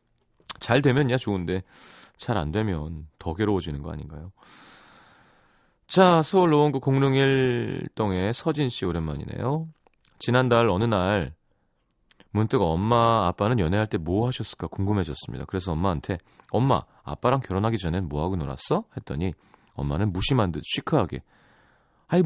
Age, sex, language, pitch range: 30-49, male, Korean, 90-130 Hz